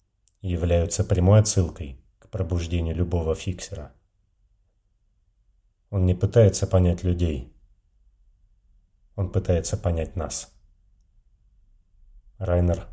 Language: Russian